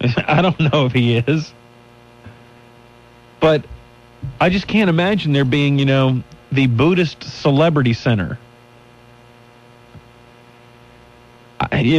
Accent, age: American, 40-59